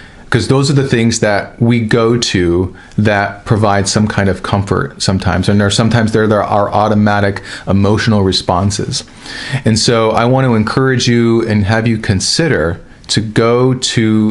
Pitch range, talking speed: 100-120 Hz, 160 wpm